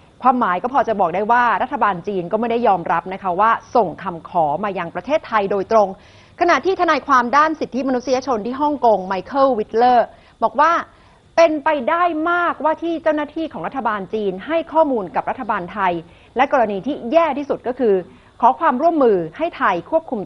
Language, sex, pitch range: Thai, female, 180-260 Hz